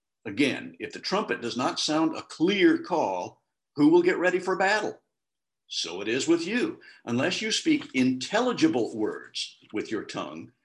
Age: 50-69